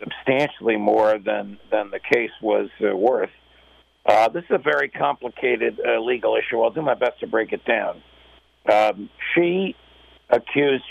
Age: 50-69